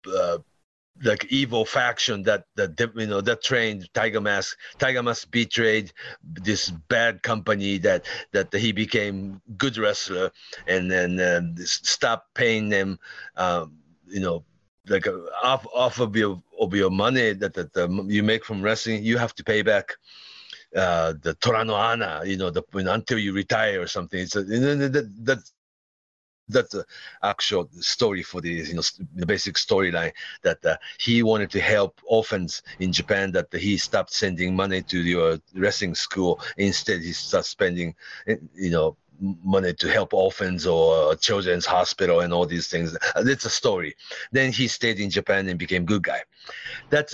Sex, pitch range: male, 90-115 Hz